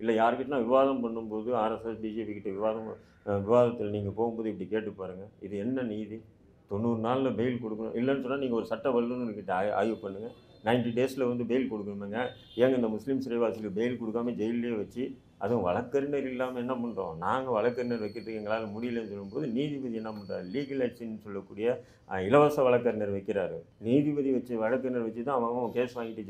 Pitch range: 105-130 Hz